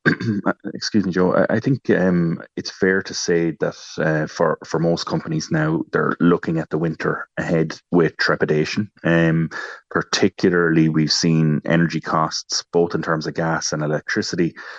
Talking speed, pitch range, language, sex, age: 155 wpm, 75-85 Hz, English, male, 30-49